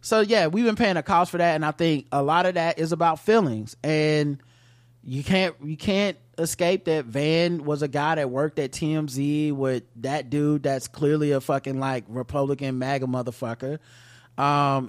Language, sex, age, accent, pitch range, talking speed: English, male, 20-39, American, 135-170 Hz, 185 wpm